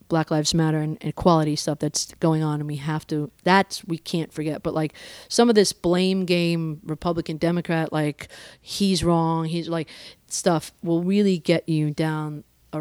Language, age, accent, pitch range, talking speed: English, 40-59, American, 160-190 Hz, 180 wpm